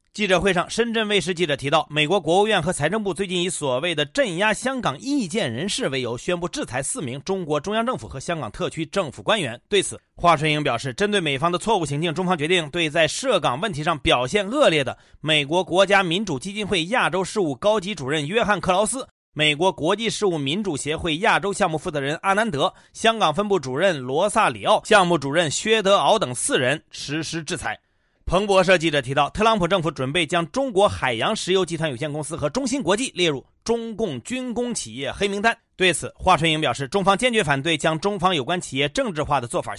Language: Chinese